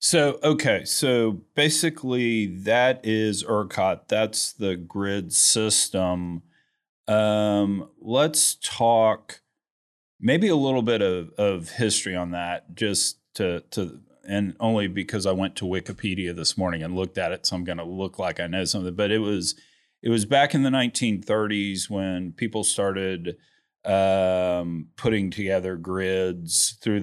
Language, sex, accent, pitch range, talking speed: English, male, American, 90-115 Hz, 145 wpm